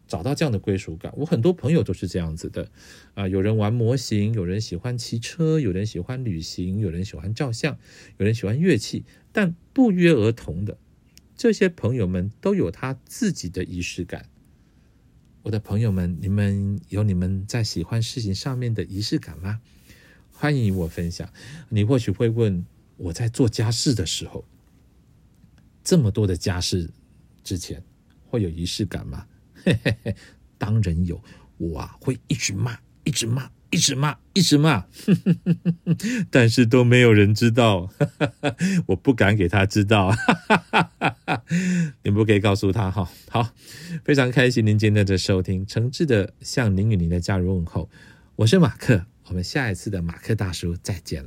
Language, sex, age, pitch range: Chinese, male, 50-69, 95-135 Hz